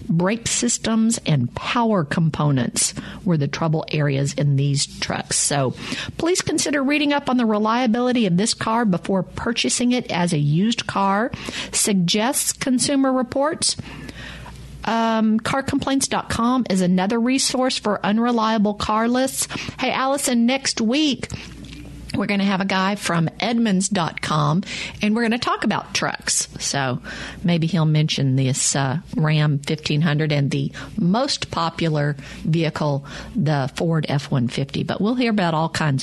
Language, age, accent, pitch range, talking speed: English, 50-69, American, 170-235 Hz, 140 wpm